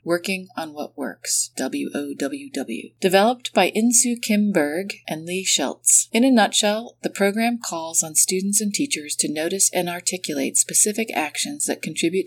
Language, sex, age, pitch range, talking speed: English, female, 40-59, 155-210 Hz, 145 wpm